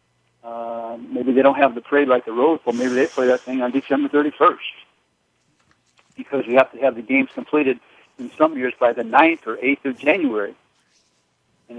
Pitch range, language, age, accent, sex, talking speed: 120-150 Hz, English, 60-79, American, male, 195 wpm